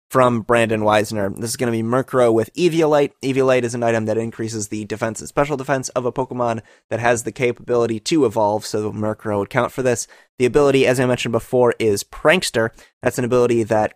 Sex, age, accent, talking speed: male, 20-39, American, 210 wpm